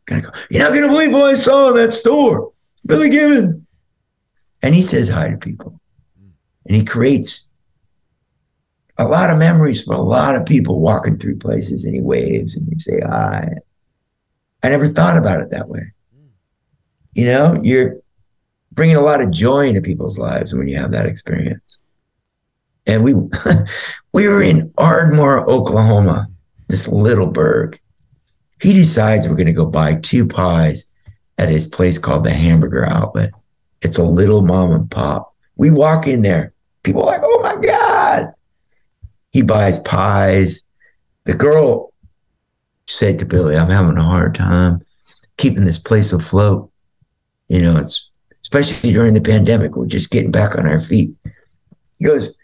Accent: American